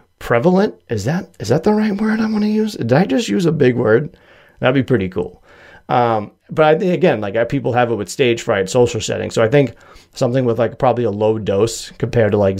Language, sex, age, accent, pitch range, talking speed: English, male, 30-49, American, 110-130 Hz, 240 wpm